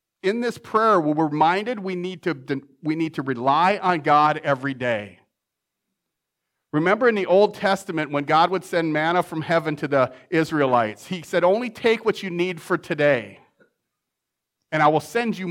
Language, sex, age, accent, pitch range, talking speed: English, male, 40-59, American, 130-180 Hz, 175 wpm